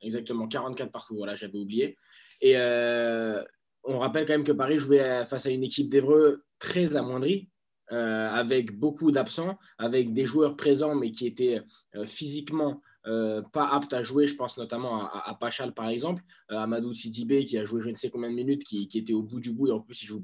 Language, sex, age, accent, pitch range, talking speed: French, male, 20-39, French, 125-165 Hz, 215 wpm